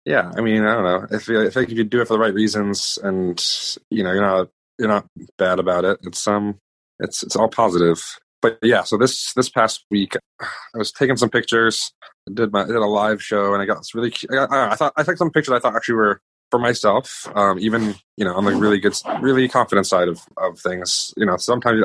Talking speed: 240 wpm